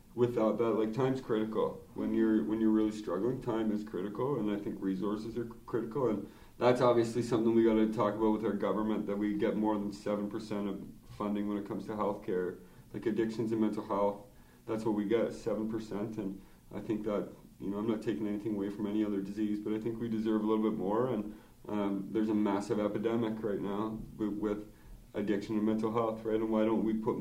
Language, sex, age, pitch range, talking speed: English, male, 30-49, 105-115 Hz, 215 wpm